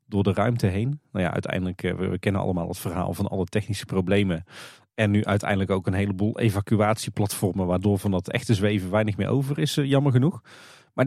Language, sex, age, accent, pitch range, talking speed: Dutch, male, 40-59, Dutch, 100-135 Hz, 195 wpm